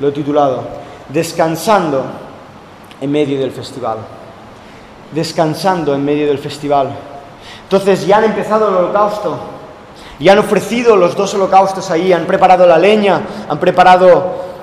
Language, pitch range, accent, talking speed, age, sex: Spanish, 175-225 Hz, Spanish, 130 wpm, 30-49, male